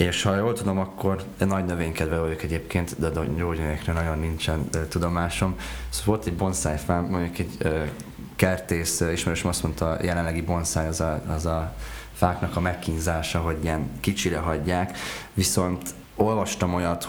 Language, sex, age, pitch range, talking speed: Hungarian, male, 20-39, 80-95 Hz, 150 wpm